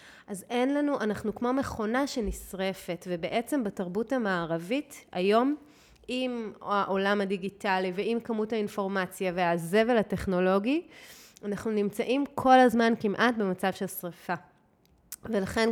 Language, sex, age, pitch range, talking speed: Hebrew, female, 30-49, 185-245 Hz, 105 wpm